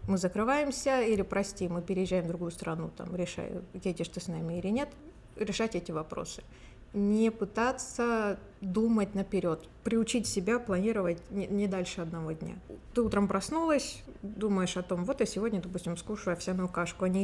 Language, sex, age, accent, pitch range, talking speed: Russian, female, 20-39, native, 185-220 Hz, 155 wpm